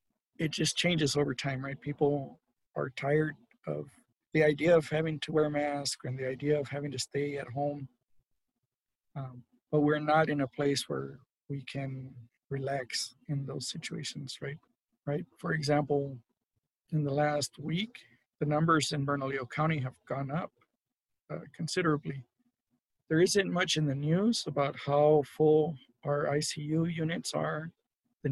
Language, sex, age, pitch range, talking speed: English, male, 50-69, 140-160 Hz, 155 wpm